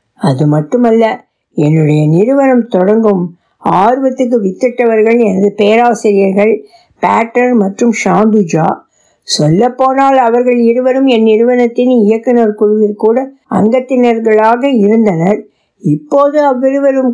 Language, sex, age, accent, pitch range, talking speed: Tamil, female, 60-79, native, 200-250 Hz, 85 wpm